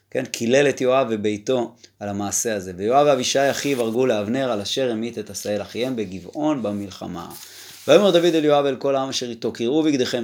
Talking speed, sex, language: 195 wpm, male, Hebrew